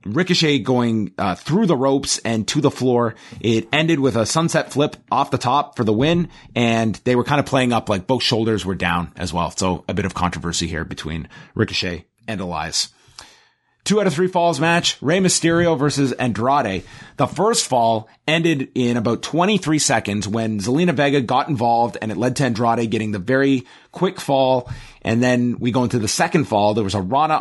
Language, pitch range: English, 105-140 Hz